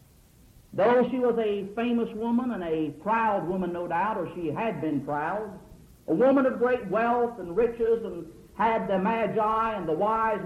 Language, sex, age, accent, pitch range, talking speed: English, male, 50-69, American, 200-250 Hz, 180 wpm